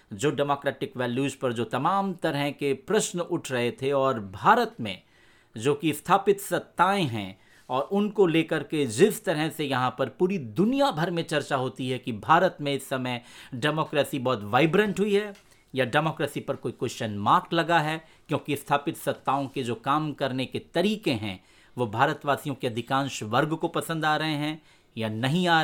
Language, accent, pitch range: Hindi, native, 125-160 Hz